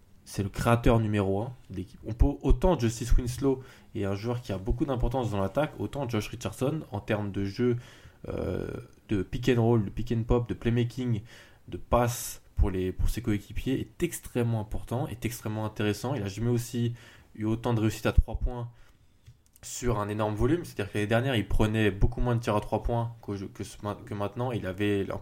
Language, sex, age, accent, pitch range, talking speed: French, male, 20-39, French, 100-120 Hz, 205 wpm